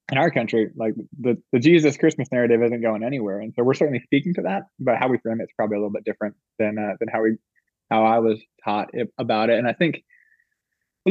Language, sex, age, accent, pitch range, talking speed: English, male, 20-39, American, 110-130 Hz, 245 wpm